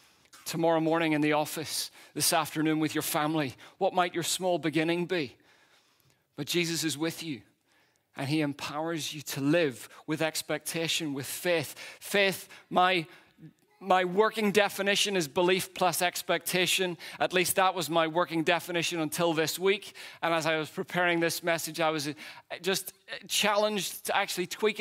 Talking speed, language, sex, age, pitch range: 155 wpm, English, male, 40-59, 165-195 Hz